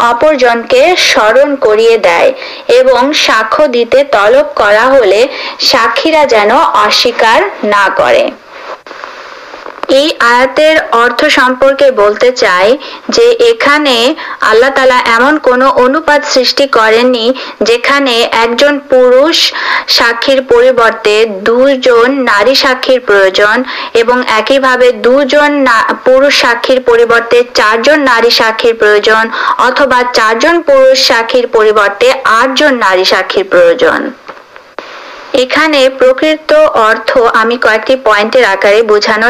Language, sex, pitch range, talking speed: Urdu, female, 235-330 Hz, 65 wpm